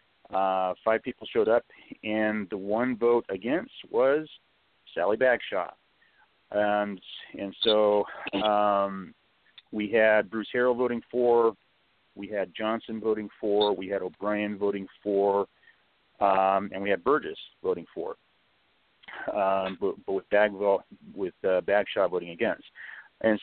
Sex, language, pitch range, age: male, English, 100-125 Hz, 40-59